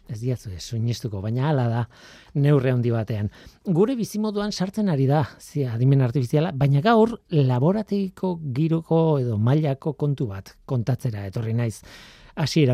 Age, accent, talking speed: 40-59, Spanish, 125 wpm